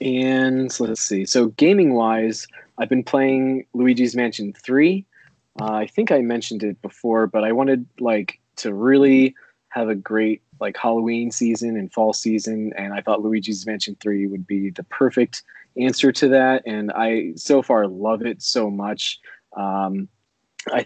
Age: 20-39